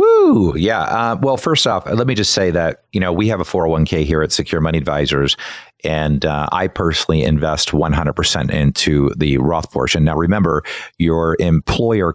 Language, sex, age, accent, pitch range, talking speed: English, male, 40-59, American, 80-105 Hz, 175 wpm